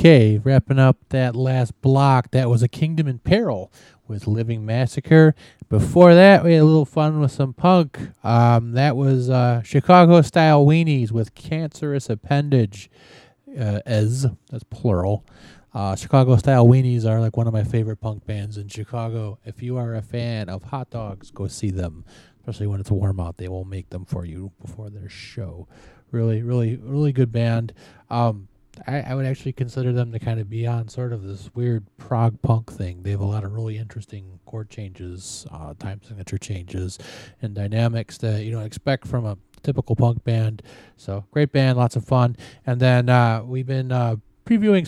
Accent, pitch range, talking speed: American, 110-135 Hz, 185 wpm